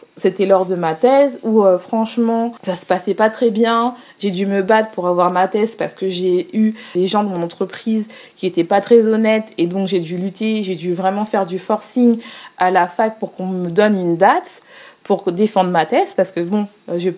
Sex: female